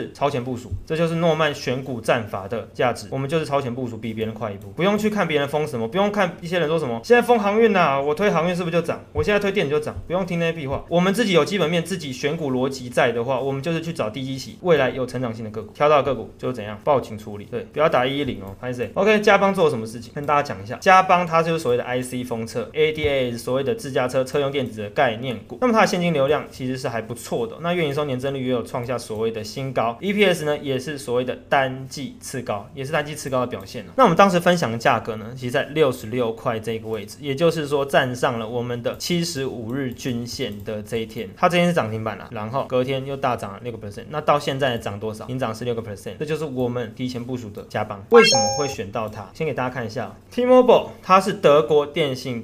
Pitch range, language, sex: 120-160 Hz, Chinese, male